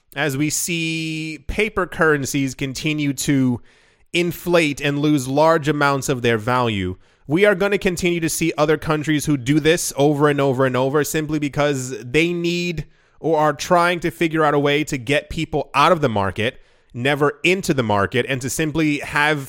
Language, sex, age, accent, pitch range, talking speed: English, male, 30-49, American, 115-155 Hz, 180 wpm